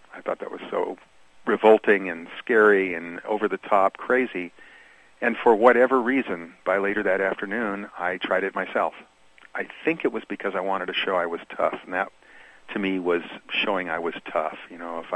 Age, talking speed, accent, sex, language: 50-69, 185 wpm, American, male, English